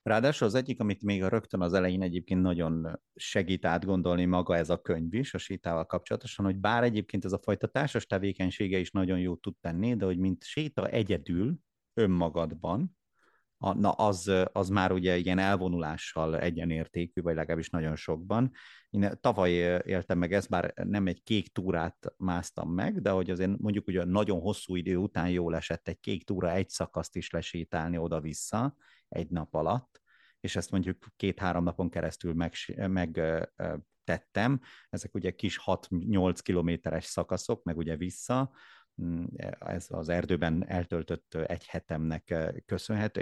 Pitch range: 85-100 Hz